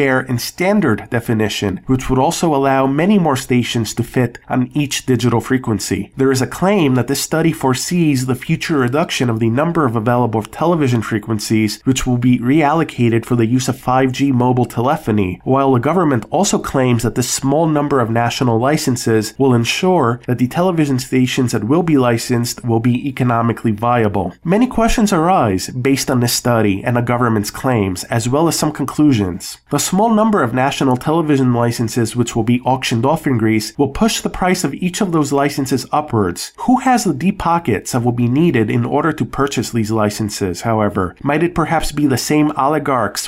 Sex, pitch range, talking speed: male, 120-150 Hz, 185 wpm